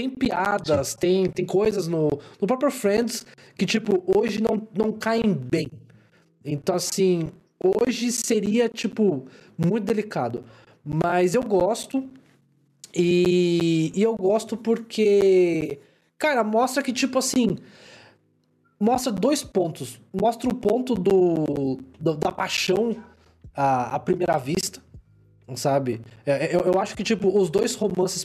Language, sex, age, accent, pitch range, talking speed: Portuguese, male, 20-39, Brazilian, 145-205 Hz, 120 wpm